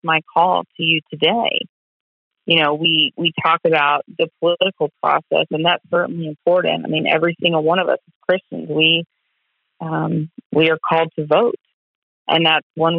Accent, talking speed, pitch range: American, 170 wpm, 160-185 Hz